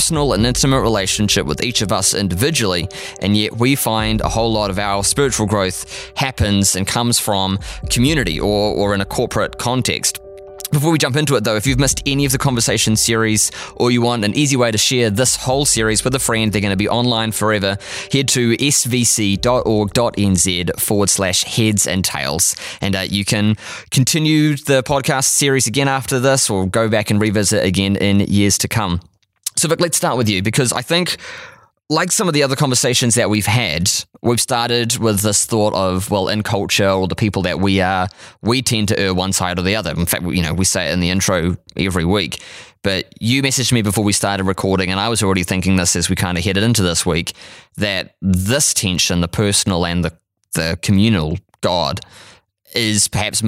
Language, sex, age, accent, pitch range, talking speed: English, male, 20-39, Australian, 95-120 Hz, 205 wpm